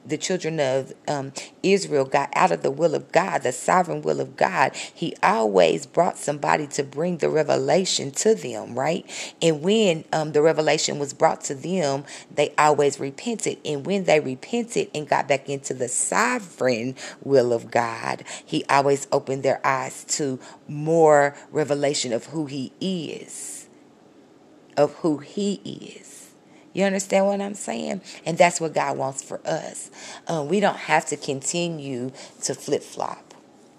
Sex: female